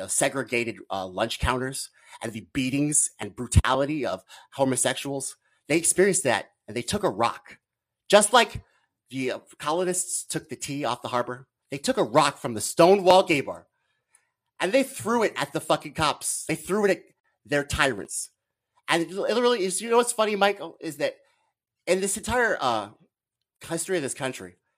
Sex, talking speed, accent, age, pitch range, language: male, 175 wpm, American, 30-49, 135-205 Hz, English